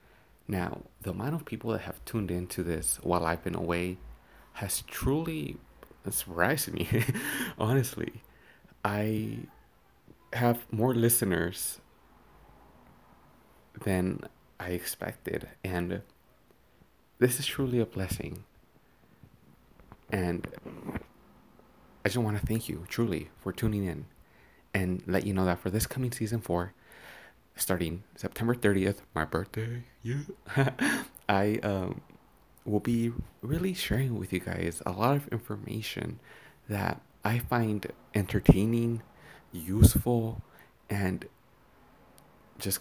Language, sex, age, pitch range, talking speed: English, male, 30-49, 90-120 Hz, 110 wpm